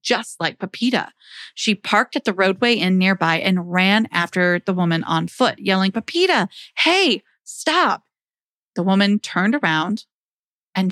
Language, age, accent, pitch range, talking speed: English, 30-49, American, 185-230 Hz, 145 wpm